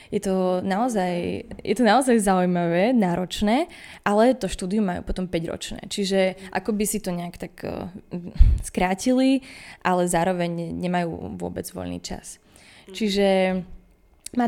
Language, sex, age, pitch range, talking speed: Slovak, female, 20-39, 180-225 Hz, 125 wpm